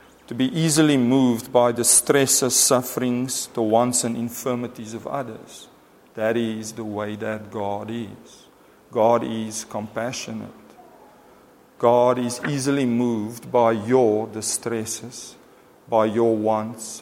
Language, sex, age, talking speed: English, male, 40-59, 120 wpm